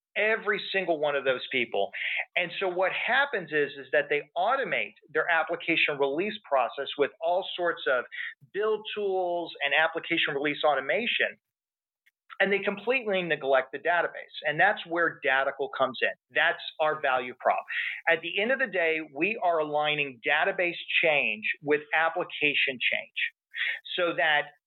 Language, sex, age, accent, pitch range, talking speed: English, male, 40-59, American, 150-195 Hz, 150 wpm